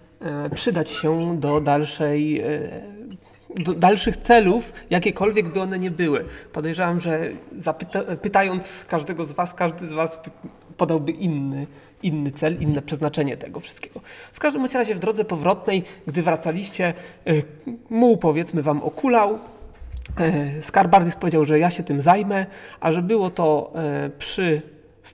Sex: male